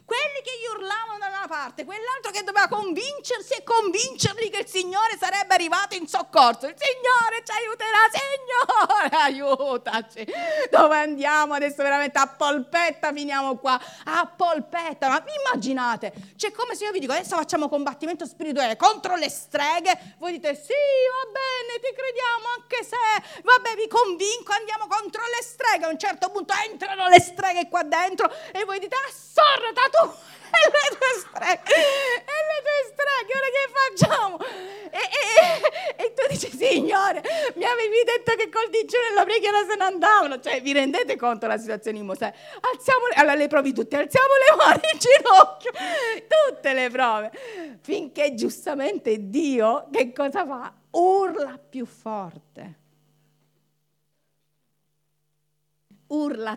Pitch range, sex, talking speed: 275-430 Hz, female, 150 wpm